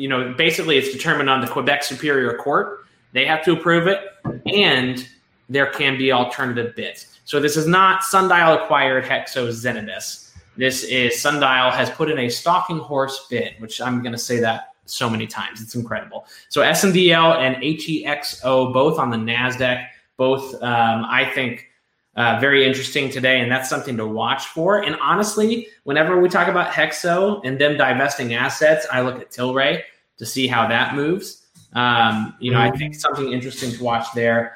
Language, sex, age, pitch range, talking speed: English, male, 20-39, 120-145 Hz, 175 wpm